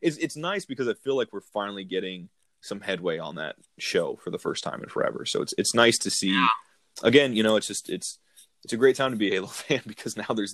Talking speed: 255 wpm